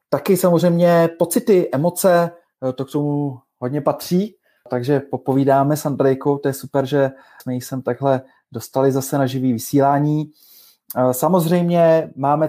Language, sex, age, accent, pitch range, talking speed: Czech, male, 20-39, native, 120-150 Hz, 130 wpm